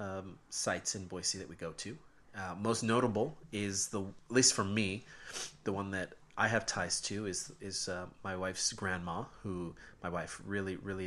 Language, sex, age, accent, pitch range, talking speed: English, male, 30-49, American, 90-115 Hz, 190 wpm